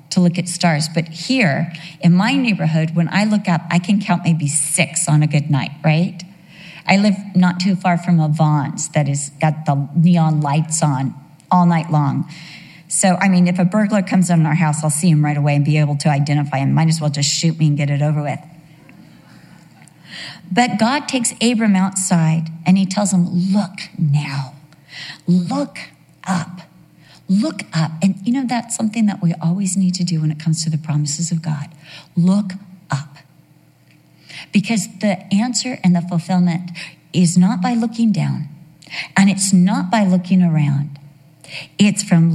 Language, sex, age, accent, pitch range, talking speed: English, female, 50-69, American, 155-195 Hz, 180 wpm